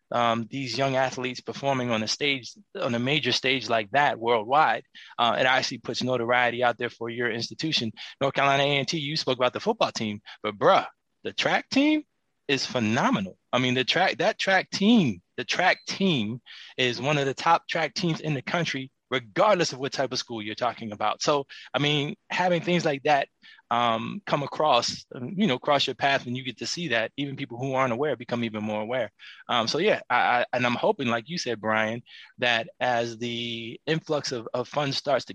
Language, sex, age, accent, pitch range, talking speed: English, male, 20-39, American, 115-140 Hz, 200 wpm